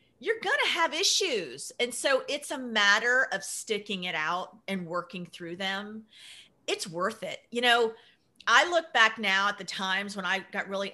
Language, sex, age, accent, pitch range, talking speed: English, female, 40-59, American, 195-260 Hz, 180 wpm